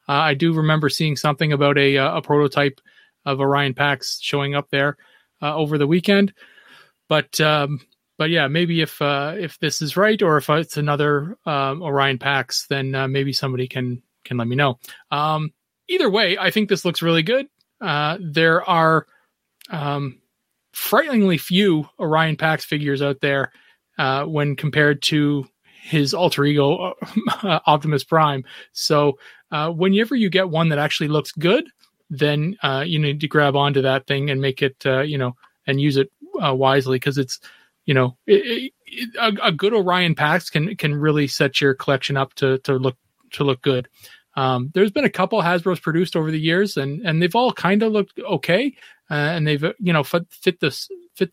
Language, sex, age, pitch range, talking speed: English, male, 30-49, 140-175 Hz, 185 wpm